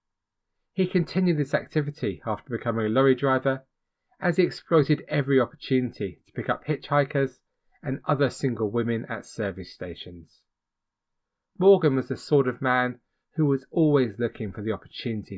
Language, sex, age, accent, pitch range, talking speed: English, male, 30-49, British, 105-135 Hz, 150 wpm